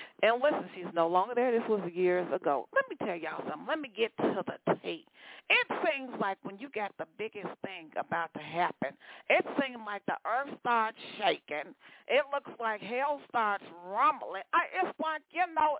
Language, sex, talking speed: English, female, 190 wpm